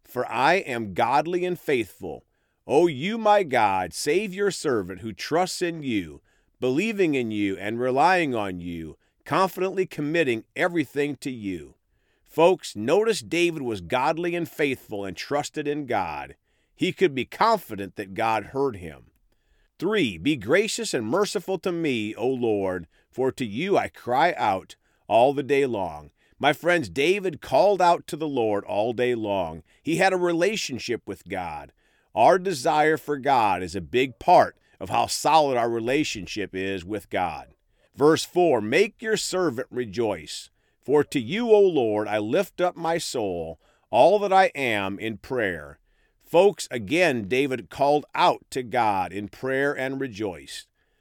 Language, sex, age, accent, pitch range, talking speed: English, male, 40-59, American, 110-180 Hz, 155 wpm